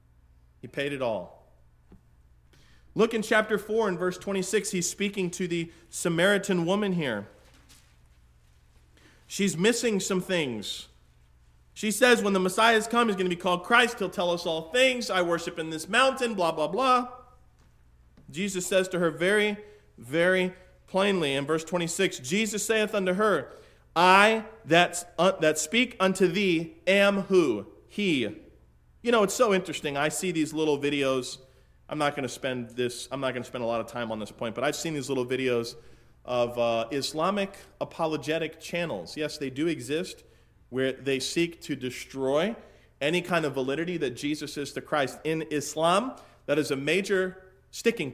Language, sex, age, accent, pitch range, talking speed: English, male, 40-59, American, 130-190 Hz, 170 wpm